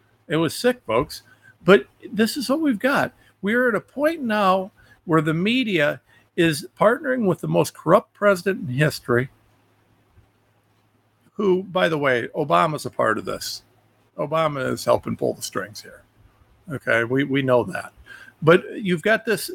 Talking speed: 165 wpm